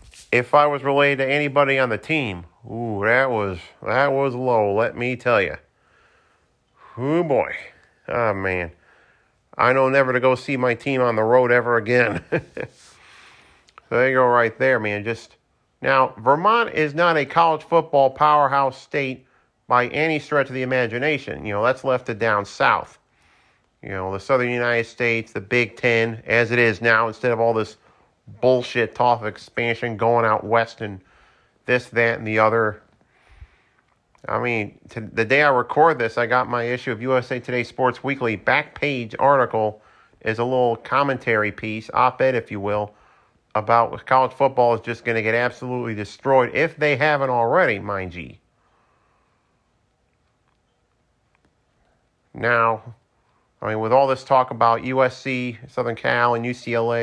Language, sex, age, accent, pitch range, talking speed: English, male, 40-59, American, 115-130 Hz, 160 wpm